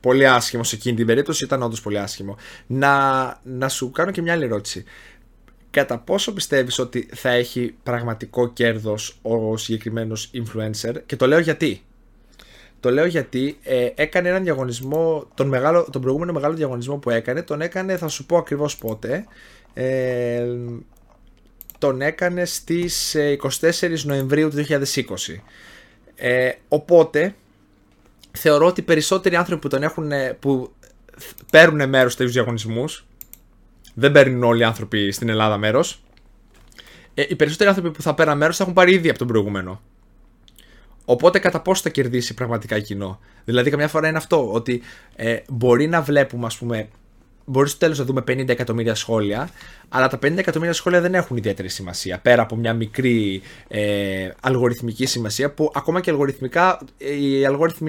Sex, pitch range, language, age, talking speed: male, 115-150 Hz, Greek, 20-39, 150 wpm